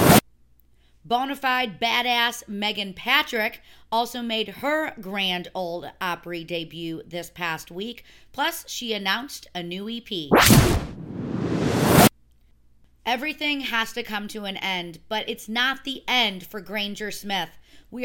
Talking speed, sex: 120 wpm, female